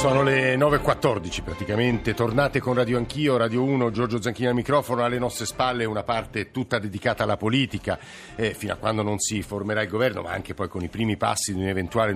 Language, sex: Italian, male